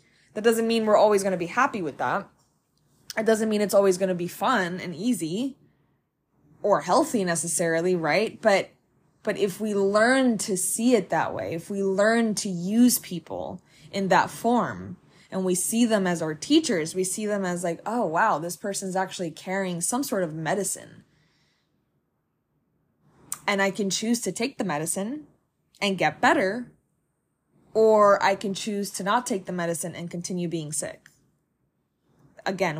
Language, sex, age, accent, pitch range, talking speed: English, female, 20-39, American, 180-215 Hz, 170 wpm